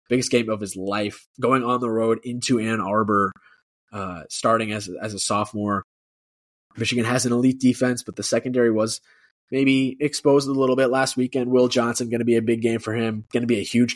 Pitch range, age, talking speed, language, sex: 100-125 Hz, 20-39, 210 wpm, English, male